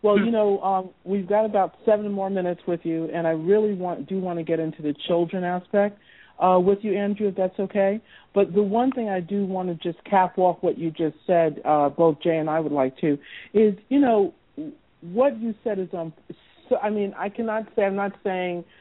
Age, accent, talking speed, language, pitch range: 50-69, American, 225 wpm, English, 160-200 Hz